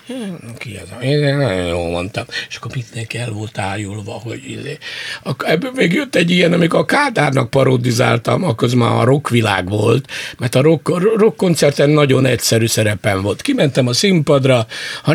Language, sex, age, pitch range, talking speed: Hungarian, male, 60-79, 115-150 Hz, 160 wpm